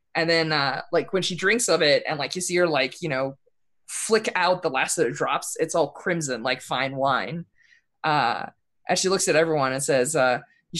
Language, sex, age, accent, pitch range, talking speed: English, female, 20-39, American, 155-220 Hz, 220 wpm